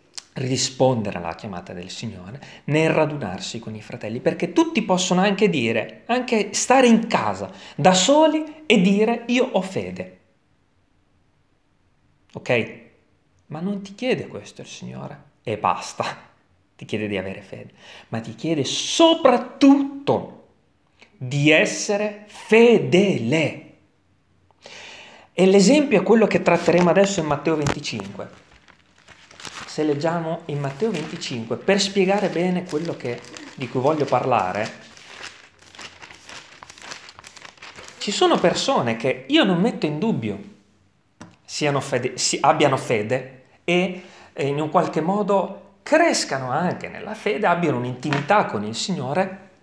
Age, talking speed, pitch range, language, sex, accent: 30-49, 115 wpm, 125-205 Hz, Italian, male, native